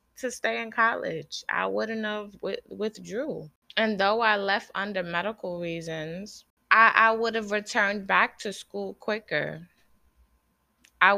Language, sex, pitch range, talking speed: English, female, 160-195 Hz, 135 wpm